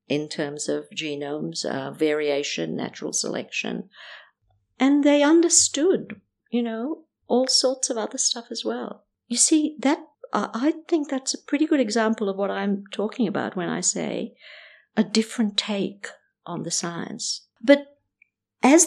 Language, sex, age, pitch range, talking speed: English, female, 50-69, 175-260 Hz, 150 wpm